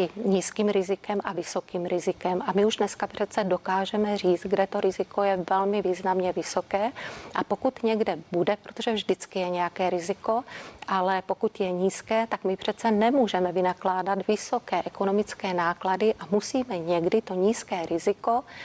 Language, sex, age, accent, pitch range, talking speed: Czech, female, 30-49, native, 185-215 Hz, 150 wpm